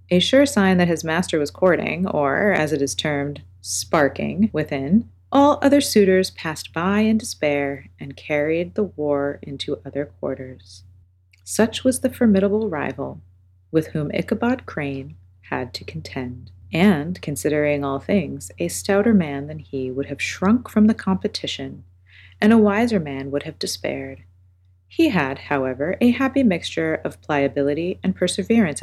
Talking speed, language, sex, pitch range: 150 wpm, English, female, 130-195 Hz